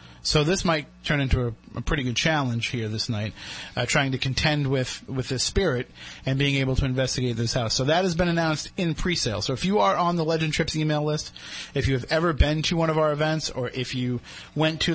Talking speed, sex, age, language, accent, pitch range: 240 wpm, male, 30-49, English, American, 130-155 Hz